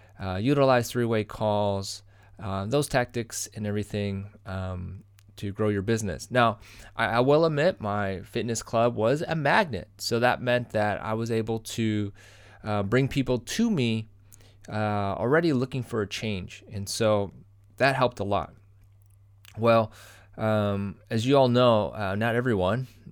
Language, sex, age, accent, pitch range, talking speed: English, male, 20-39, American, 100-120 Hz, 155 wpm